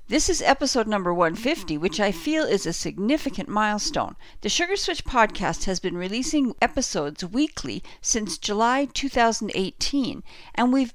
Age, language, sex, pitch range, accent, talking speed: 50-69, English, female, 205-290 Hz, American, 140 wpm